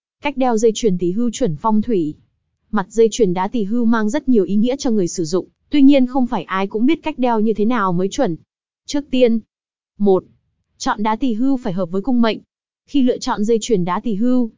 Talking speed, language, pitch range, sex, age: 240 wpm, Vietnamese, 205-250 Hz, female, 20-39